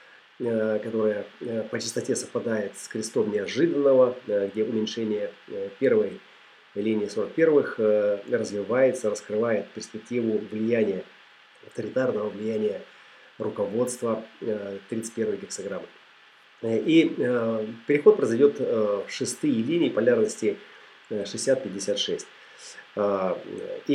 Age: 30-49